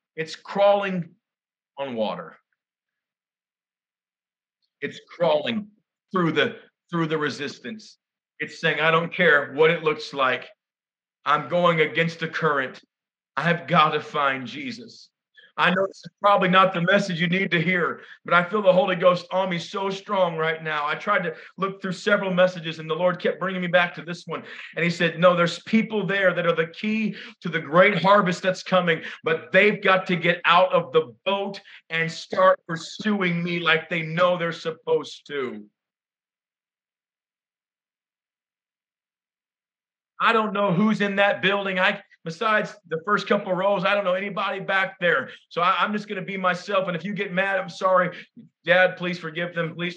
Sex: male